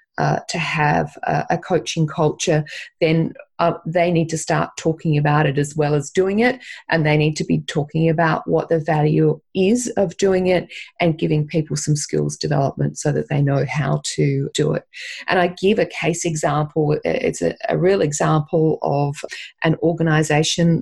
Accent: Australian